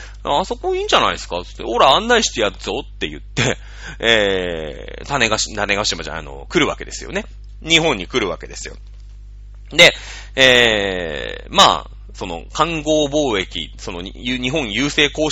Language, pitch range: Japanese, 100-140 Hz